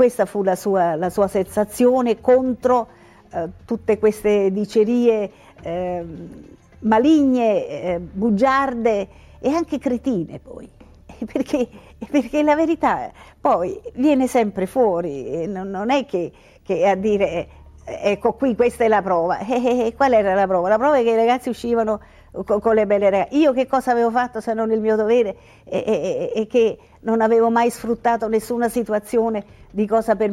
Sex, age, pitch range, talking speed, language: female, 50-69, 205-270 Hz, 155 wpm, Italian